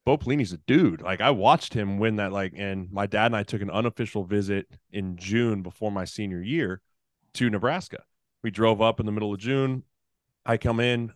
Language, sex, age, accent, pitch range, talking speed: English, male, 20-39, American, 95-110 Hz, 210 wpm